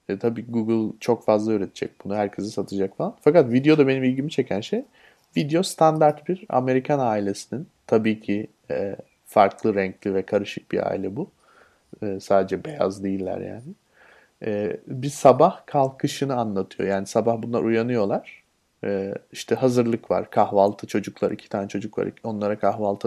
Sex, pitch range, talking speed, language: male, 110-145 Hz, 150 wpm, Turkish